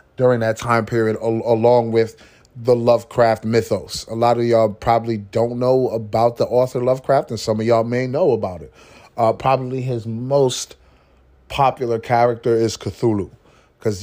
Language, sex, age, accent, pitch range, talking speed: English, male, 30-49, American, 105-120 Hz, 160 wpm